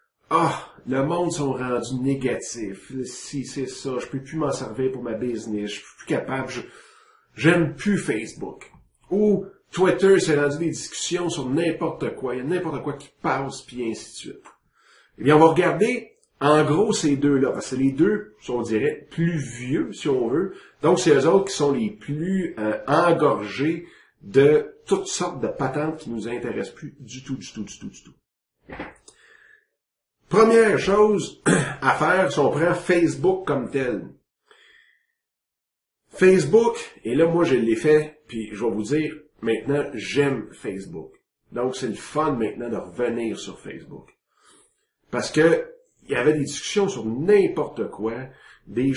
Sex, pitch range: male, 130-185 Hz